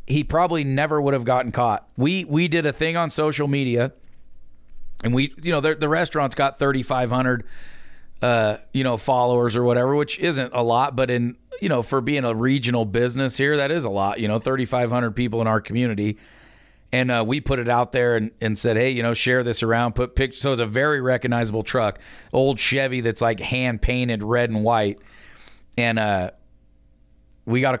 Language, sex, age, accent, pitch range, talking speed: English, male, 40-59, American, 110-135 Hz, 210 wpm